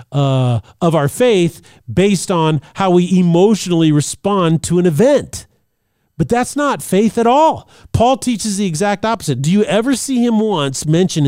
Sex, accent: male, American